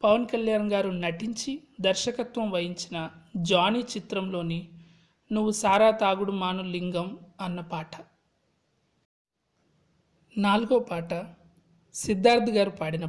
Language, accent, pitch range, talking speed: Telugu, native, 175-215 Hz, 90 wpm